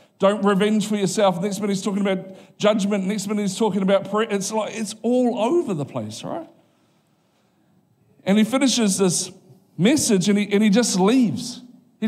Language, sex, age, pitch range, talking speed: English, male, 50-69, 165-215 Hz, 180 wpm